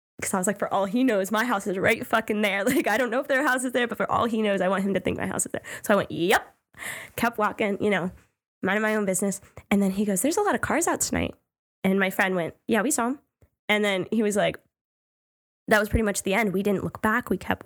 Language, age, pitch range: English, 10-29, 190-235 Hz